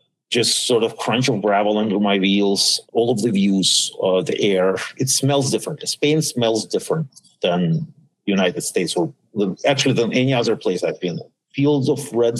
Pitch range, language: 105-140 Hz, English